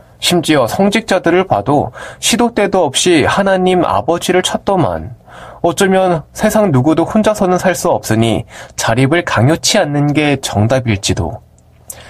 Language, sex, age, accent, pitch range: Korean, male, 20-39, native, 130-185 Hz